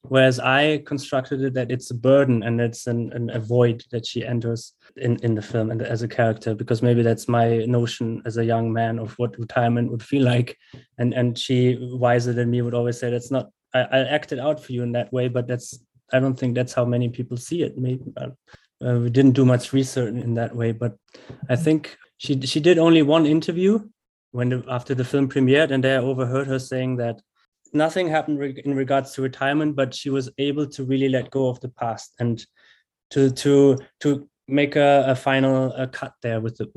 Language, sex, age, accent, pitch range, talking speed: English, male, 20-39, German, 120-135 Hz, 220 wpm